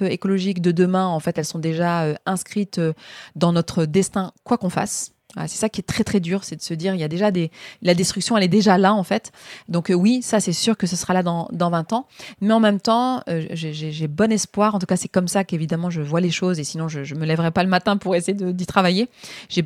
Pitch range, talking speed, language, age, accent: 165-200 Hz, 270 wpm, French, 20-39, French